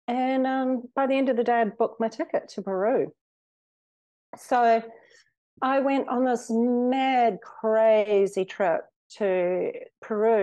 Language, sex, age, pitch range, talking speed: English, female, 40-59, 200-245 Hz, 145 wpm